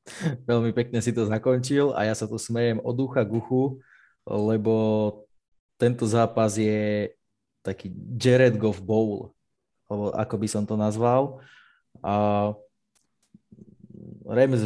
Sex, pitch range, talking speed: male, 105-125 Hz, 115 wpm